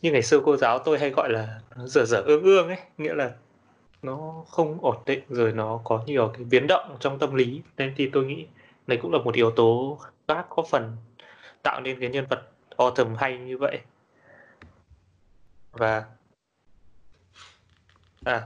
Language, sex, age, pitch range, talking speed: Vietnamese, male, 20-39, 115-145 Hz, 180 wpm